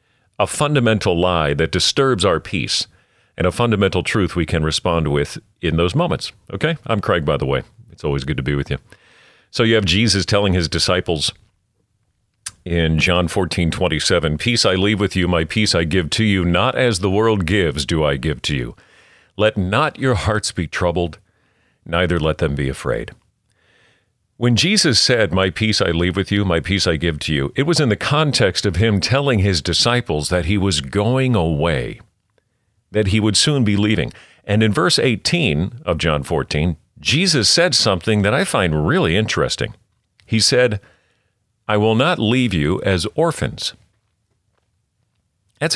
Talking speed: 180 wpm